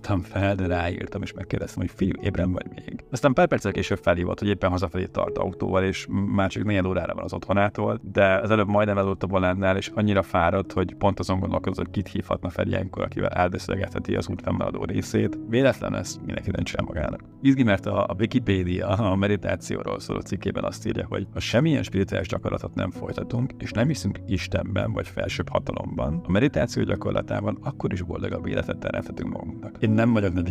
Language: Hungarian